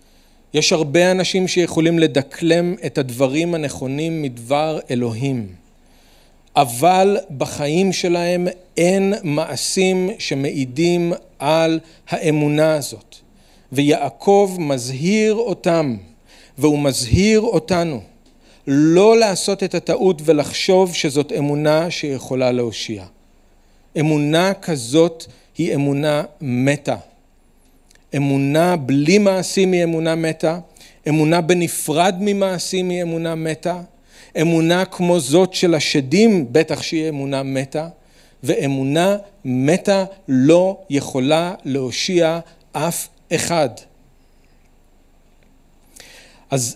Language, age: Hebrew, 40-59